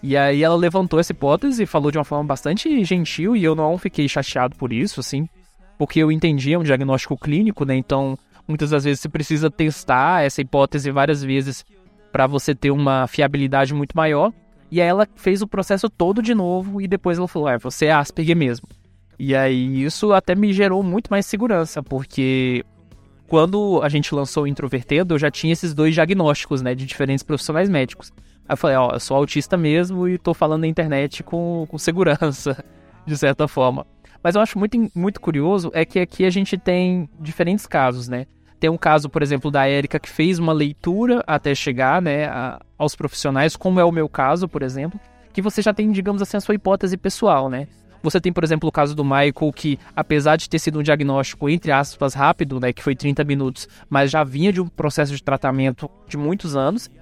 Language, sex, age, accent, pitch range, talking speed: Portuguese, male, 20-39, Brazilian, 140-180 Hz, 205 wpm